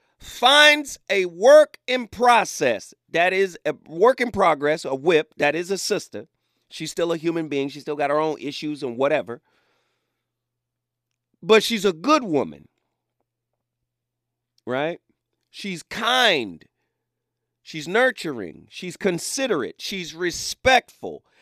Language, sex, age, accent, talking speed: English, male, 40-59, American, 125 wpm